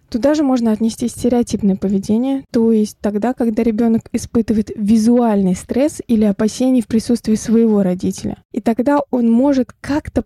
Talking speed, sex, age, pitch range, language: 145 wpm, female, 20-39, 215-255 Hz, Russian